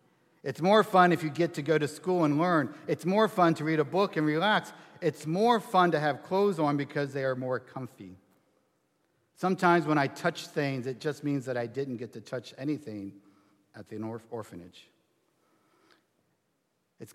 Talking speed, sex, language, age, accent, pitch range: 185 wpm, male, English, 50-69, American, 120-170 Hz